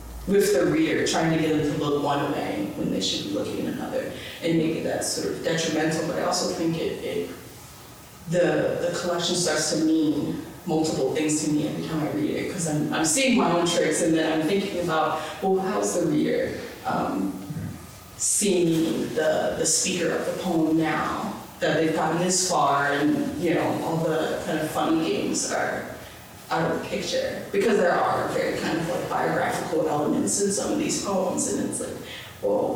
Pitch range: 160-205 Hz